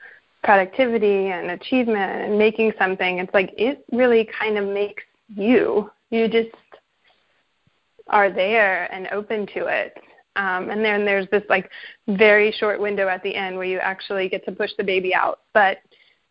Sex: female